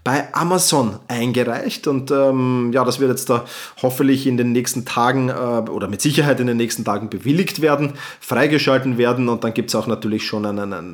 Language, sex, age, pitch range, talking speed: German, male, 30-49, 125-170 Hz, 195 wpm